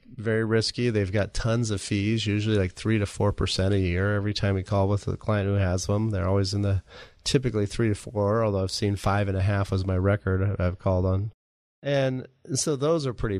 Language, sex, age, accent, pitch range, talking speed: English, male, 30-49, American, 100-120 Hz, 210 wpm